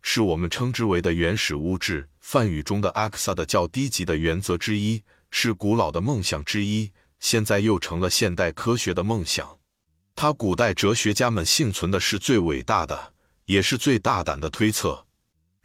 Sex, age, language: male, 50-69, Chinese